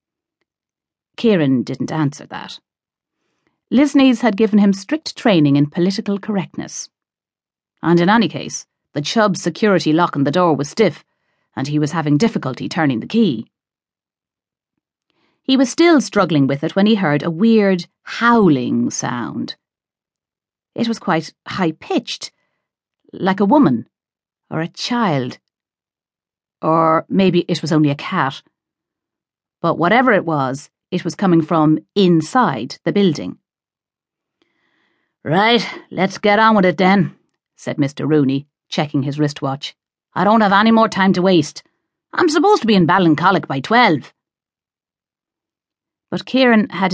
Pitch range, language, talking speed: 155-215 Hz, English, 135 wpm